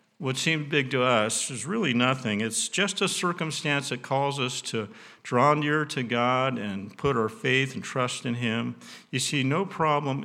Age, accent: 50-69, American